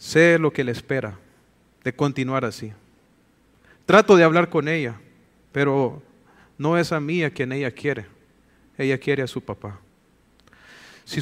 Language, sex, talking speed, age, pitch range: English, male, 150 wpm, 40-59, 120-165 Hz